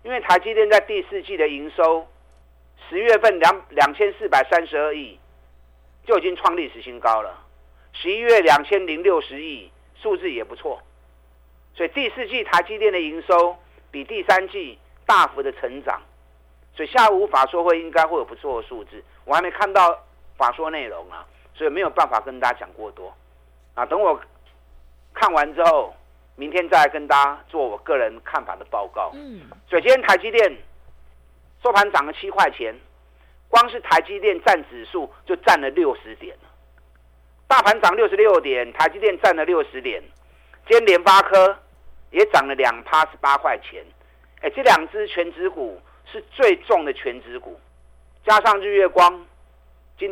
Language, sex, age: Chinese, male, 50-69